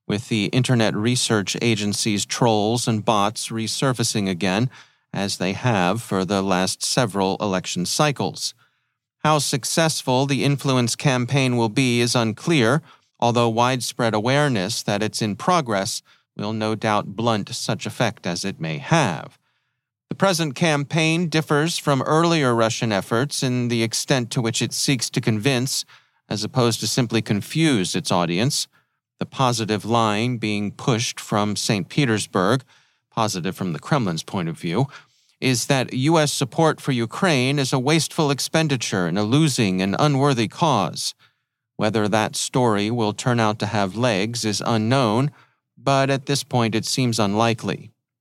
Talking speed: 145 wpm